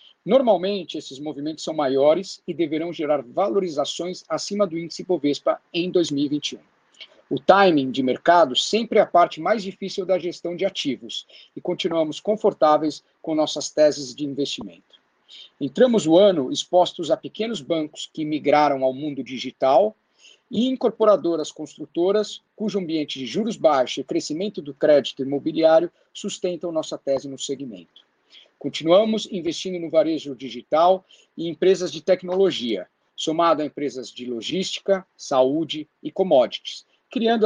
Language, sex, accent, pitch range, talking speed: English, male, Brazilian, 150-200 Hz, 135 wpm